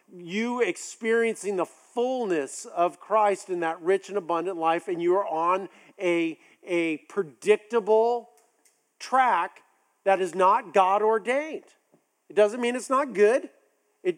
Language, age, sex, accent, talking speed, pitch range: English, 50-69, male, American, 130 wpm, 175-270 Hz